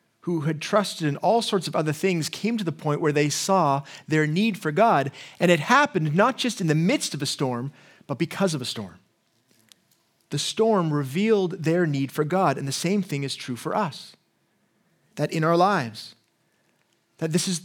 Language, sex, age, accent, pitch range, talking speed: English, male, 30-49, American, 160-215 Hz, 195 wpm